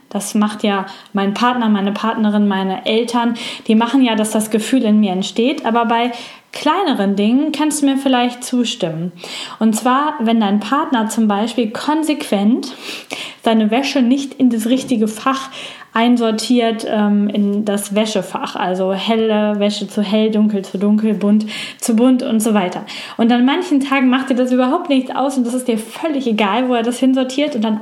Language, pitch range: German, 210-260 Hz